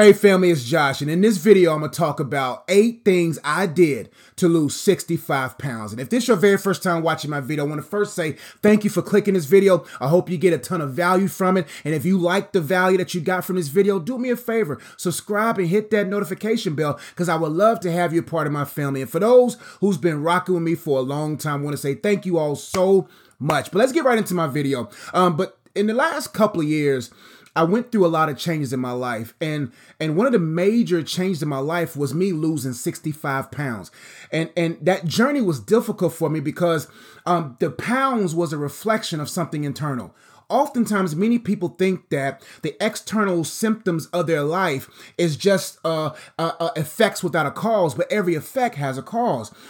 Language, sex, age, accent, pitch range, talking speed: English, male, 30-49, American, 150-205 Hz, 230 wpm